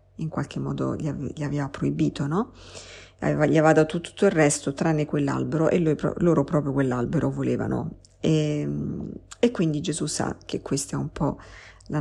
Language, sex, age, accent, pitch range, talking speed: Italian, female, 50-69, native, 140-165 Hz, 155 wpm